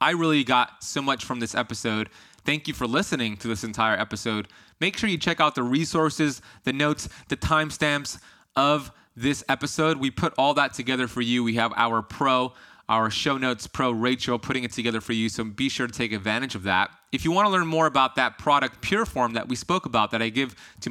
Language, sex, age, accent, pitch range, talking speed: English, male, 20-39, American, 115-145 Hz, 220 wpm